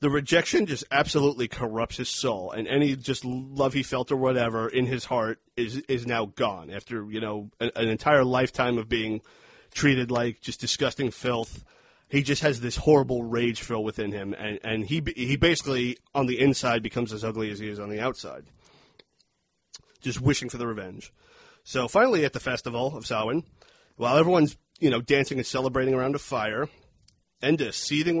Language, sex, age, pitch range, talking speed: English, male, 30-49, 115-140 Hz, 185 wpm